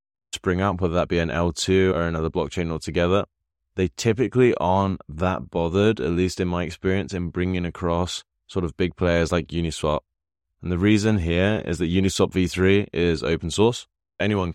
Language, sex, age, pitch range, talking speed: English, male, 20-39, 80-95 Hz, 175 wpm